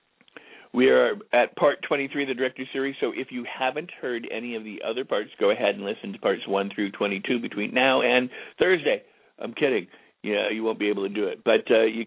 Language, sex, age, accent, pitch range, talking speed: English, male, 50-69, American, 100-125 Hz, 220 wpm